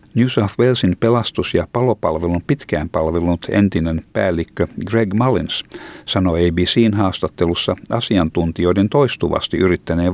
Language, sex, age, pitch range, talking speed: Finnish, male, 60-79, 85-105 Hz, 100 wpm